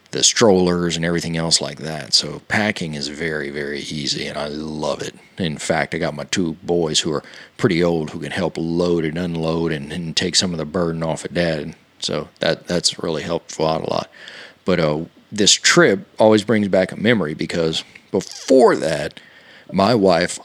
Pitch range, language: 80-100 Hz, English